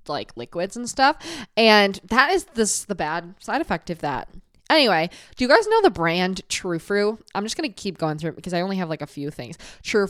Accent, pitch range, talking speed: American, 175-240 Hz, 225 wpm